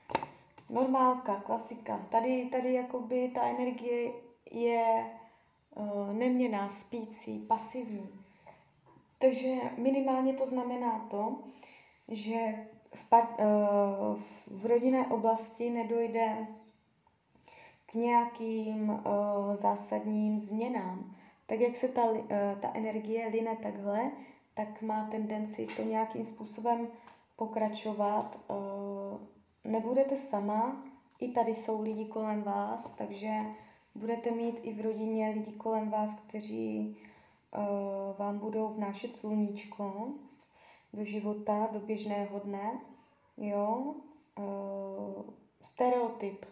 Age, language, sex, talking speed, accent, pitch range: 20-39, Czech, female, 100 wpm, native, 210-245 Hz